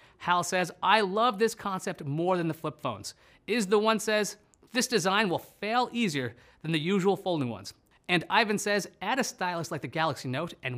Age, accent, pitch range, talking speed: 30-49, American, 150-210 Hz, 200 wpm